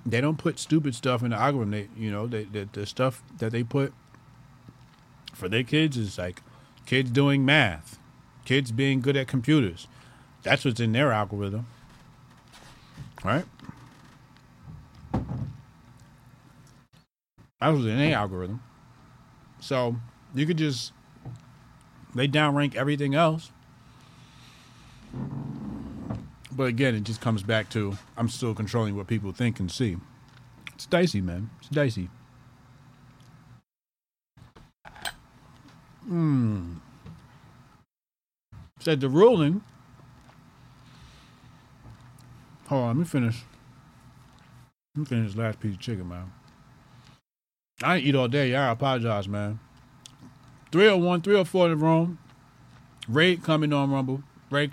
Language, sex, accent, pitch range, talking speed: English, male, American, 120-140 Hz, 120 wpm